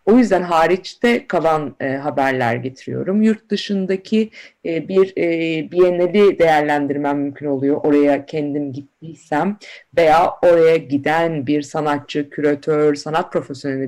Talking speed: 115 wpm